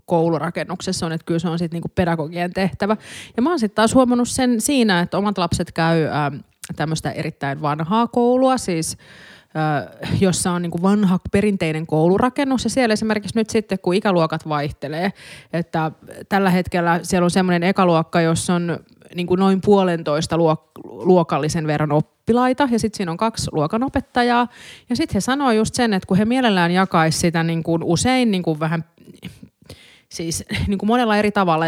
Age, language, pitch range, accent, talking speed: 30-49, Finnish, 165-215 Hz, native, 160 wpm